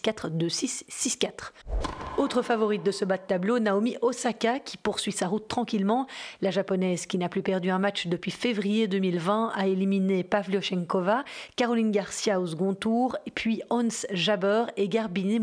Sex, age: female, 40-59